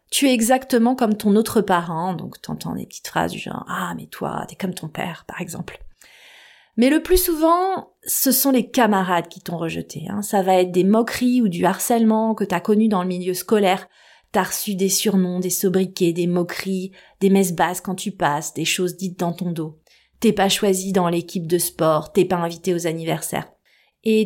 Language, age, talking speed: French, 30-49, 205 wpm